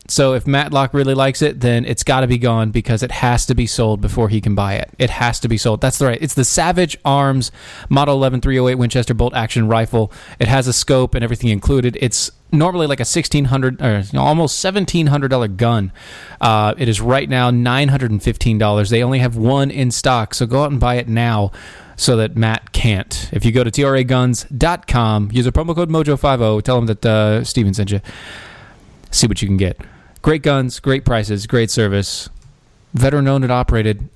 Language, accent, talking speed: English, American, 200 wpm